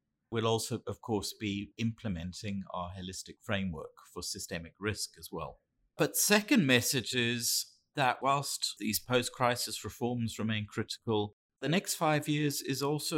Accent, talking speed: British, 140 wpm